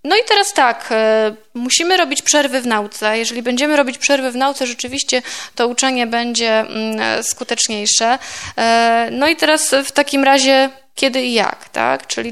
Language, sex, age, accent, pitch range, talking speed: Polish, female, 20-39, native, 220-270 Hz, 150 wpm